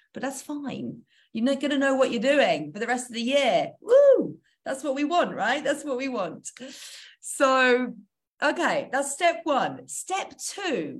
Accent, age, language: British, 30-49, English